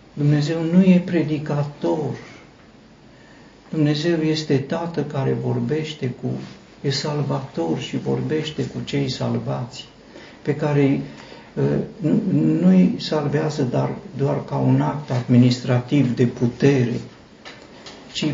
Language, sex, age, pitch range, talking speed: Romanian, male, 50-69, 115-150 Hz, 95 wpm